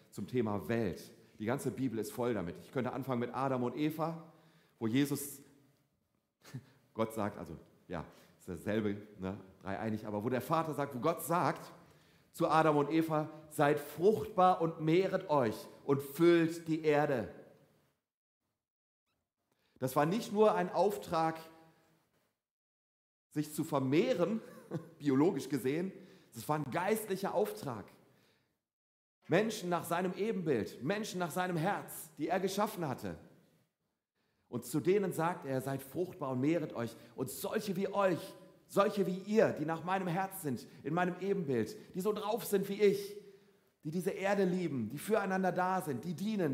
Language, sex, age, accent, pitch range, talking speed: German, male, 40-59, German, 130-185 Hz, 150 wpm